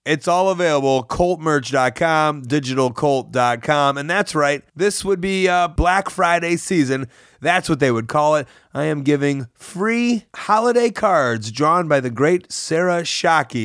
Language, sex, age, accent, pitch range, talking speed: English, male, 30-49, American, 125-165 Hz, 145 wpm